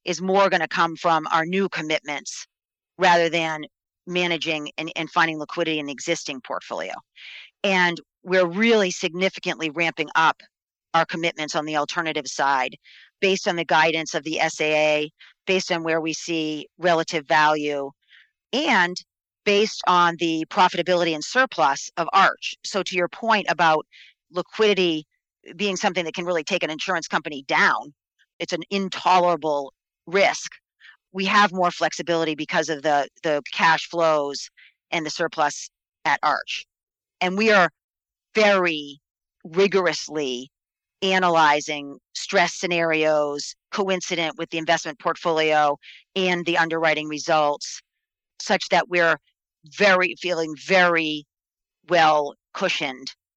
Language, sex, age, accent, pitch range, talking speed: English, female, 40-59, American, 155-180 Hz, 130 wpm